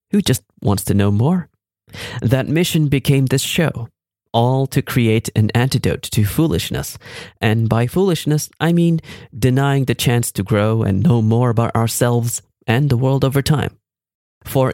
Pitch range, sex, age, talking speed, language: 105-140 Hz, male, 30-49, 160 wpm, English